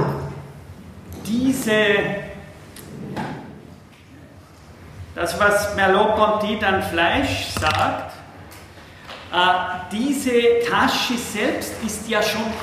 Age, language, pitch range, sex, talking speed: 40-59, German, 170-220 Hz, male, 65 wpm